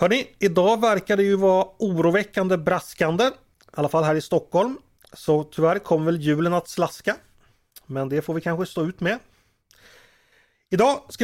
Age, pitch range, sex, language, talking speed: 30-49, 130-190 Hz, male, Swedish, 170 wpm